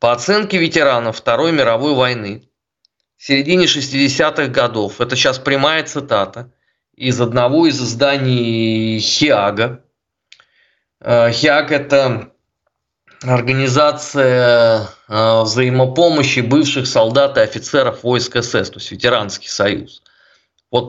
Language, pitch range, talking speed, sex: Russian, 130-160 Hz, 100 wpm, male